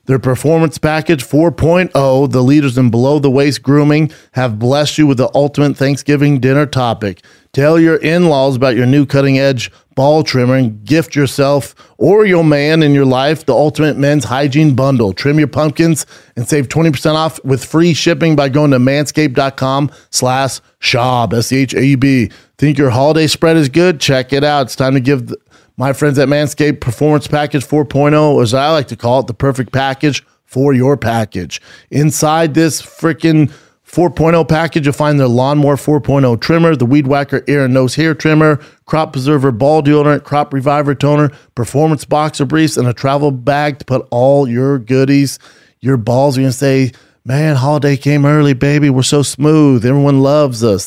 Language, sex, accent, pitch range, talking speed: English, male, American, 130-150 Hz, 170 wpm